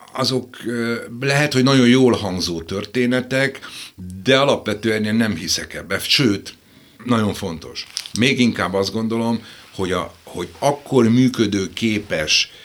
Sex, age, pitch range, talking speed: male, 60-79, 85-120 Hz, 125 wpm